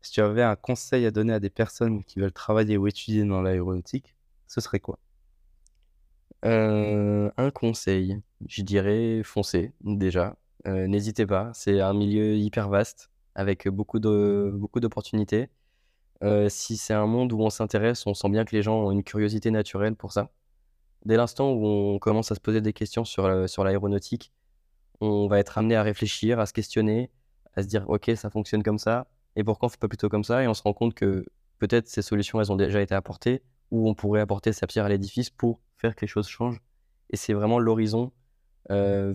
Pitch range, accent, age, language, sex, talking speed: 100-110 Hz, French, 20-39, French, male, 200 wpm